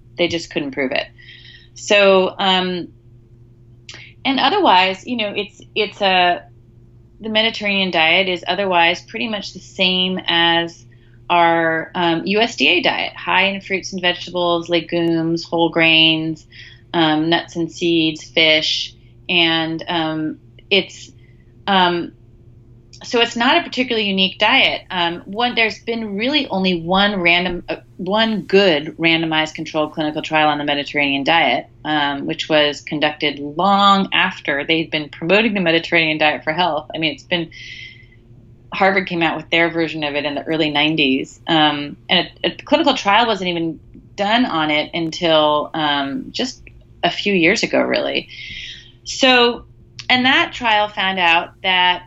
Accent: American